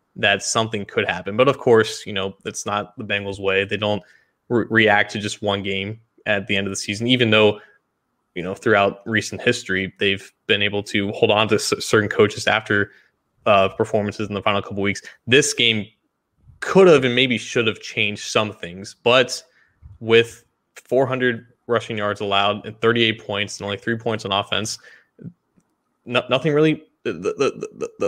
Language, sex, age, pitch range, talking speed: English, male, 20-39, 105-125 Hz, 175 wpm